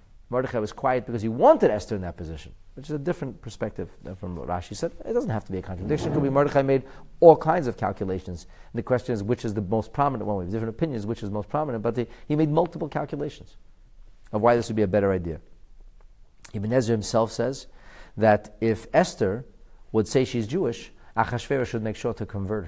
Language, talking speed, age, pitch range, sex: English, 225 wpm, 40-59, 95-135 Hz, male